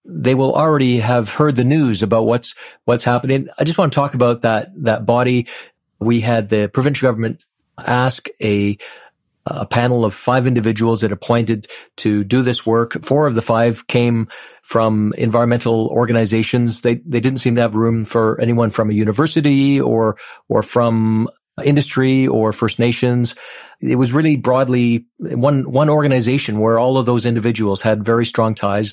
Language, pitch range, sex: English, 110-130 Hz, male